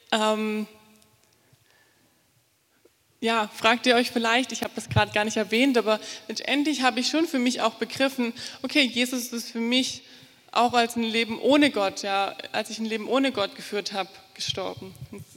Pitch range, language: 205-255 Hz, English